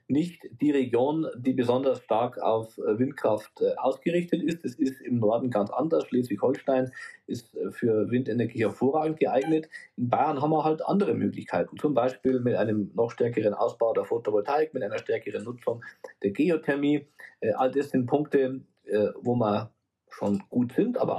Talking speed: 155 wpm